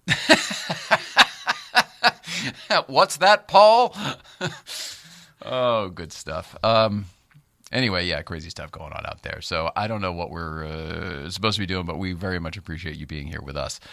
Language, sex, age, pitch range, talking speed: English, male, 40-59, 85-115 Hz, 155 wpm